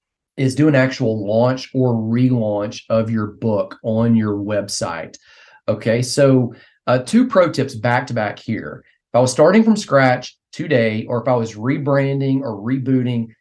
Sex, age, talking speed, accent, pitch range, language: male, 40-59, 165 wpm, American, 125-160 Hz, English